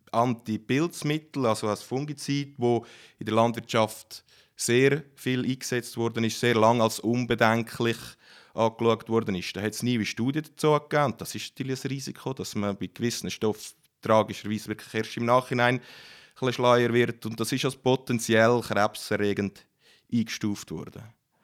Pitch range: 110-130 Hz